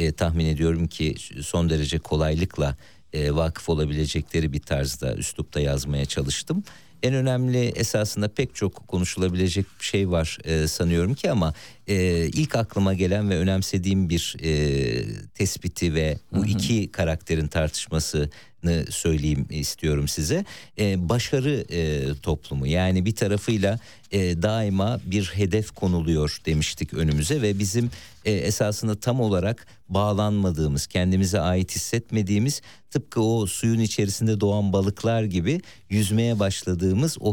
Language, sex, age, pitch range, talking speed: Turkish, male, 50-69, 80-115 Hz, 115 wpm